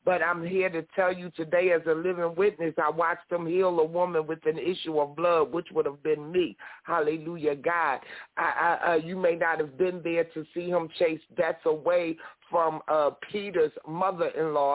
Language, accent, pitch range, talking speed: English, American, 150-175 Hz, 195 wpm